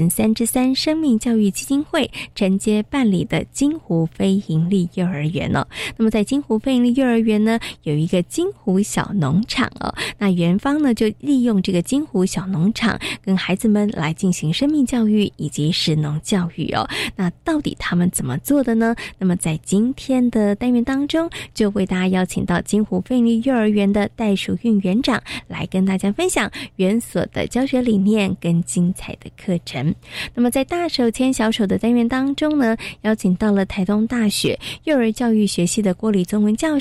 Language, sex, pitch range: Chinese, female, 180-240 Hz